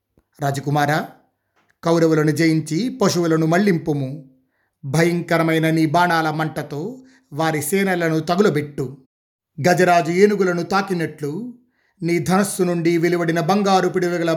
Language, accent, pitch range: Telugu, native, 155-185 Hz